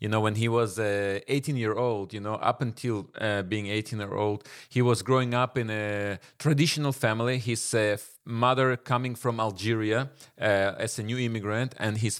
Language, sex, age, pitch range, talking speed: English, male, 30-49, 105-135 Hz, 195 wpm